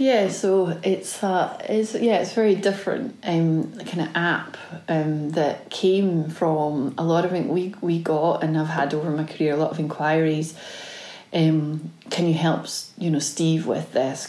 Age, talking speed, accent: 30-49, 180 wpm, British